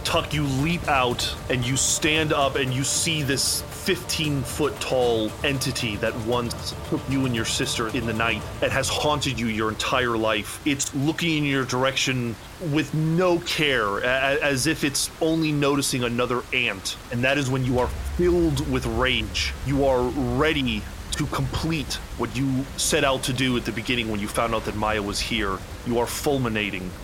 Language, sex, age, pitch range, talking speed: English, male, 30-49, 115-140 Hz, 180 wpm